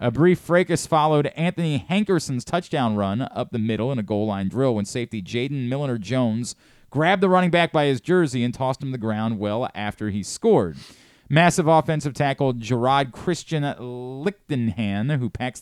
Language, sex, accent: English, male, American